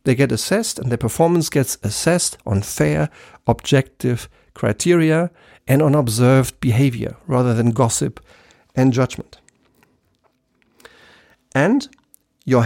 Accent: German